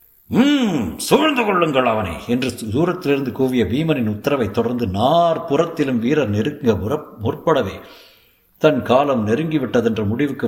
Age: 60-79